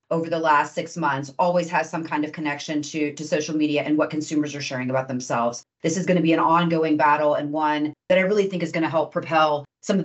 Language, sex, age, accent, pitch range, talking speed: English, female, 30-49, American, 150-180 Hz, 255 wpm